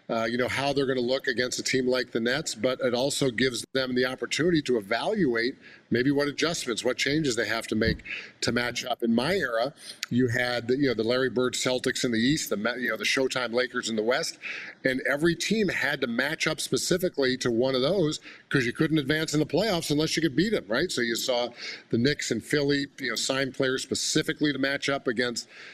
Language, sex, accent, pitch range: English, male, American, 115-135 Hz